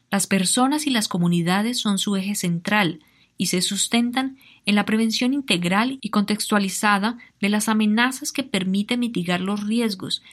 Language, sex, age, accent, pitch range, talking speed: Spanish, female, 20-39, Colombian, 185-245 Hz, 150 wpm